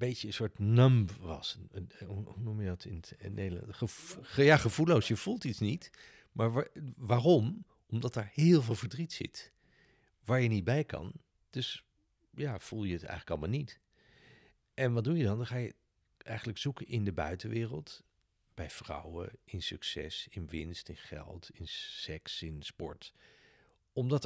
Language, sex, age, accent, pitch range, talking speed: Dutch, male, 50-69, Dutch, 95-125 Hz, 165 wpm